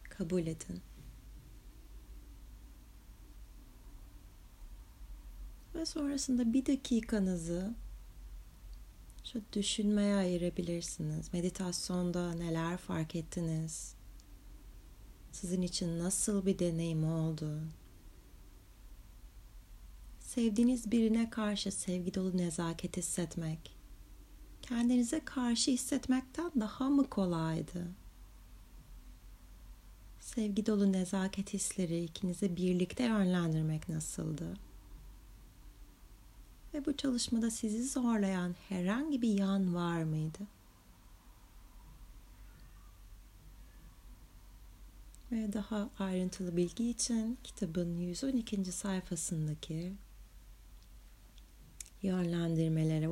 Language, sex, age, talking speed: Turkish, female, 30-49, 65 wpm